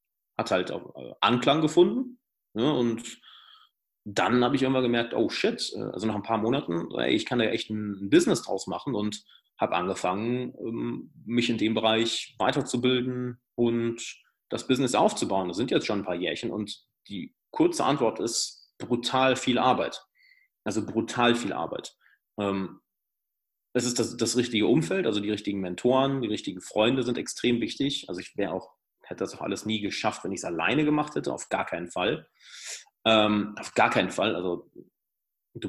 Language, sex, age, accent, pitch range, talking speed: German, male, 30-49, German, 105-130 Hz, 165 wpm